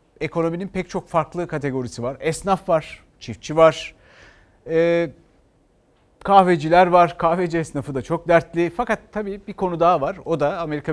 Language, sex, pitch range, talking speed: Turkish, male, 150-210 Hz, 150 wpm